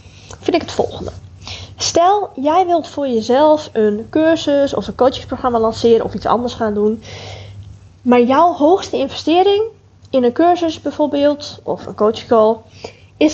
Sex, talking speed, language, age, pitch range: female, 150 wpm, Dutch, 20-39, 210-280 Hz